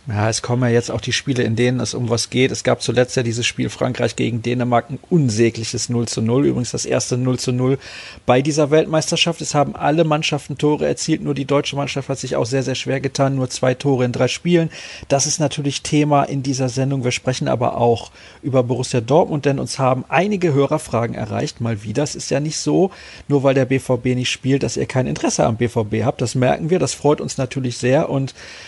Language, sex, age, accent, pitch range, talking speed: German, male, 40-59, German, 120-145 Hz, 230 wpm